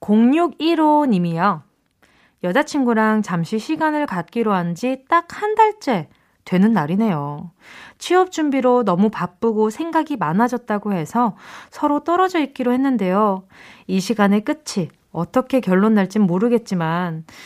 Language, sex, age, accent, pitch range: Korean, female, 20-39, native, 190-295 Hz